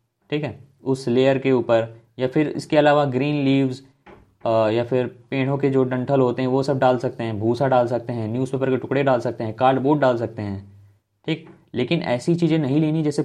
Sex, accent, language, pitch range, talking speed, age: male, native, Hindi, 115-155 Hz, 210 wpm, 20-39